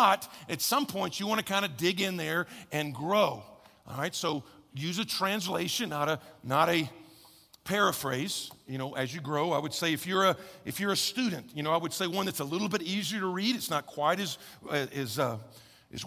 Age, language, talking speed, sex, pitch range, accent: 50-69, English, 225 wpm, male, 145-200 Hz, American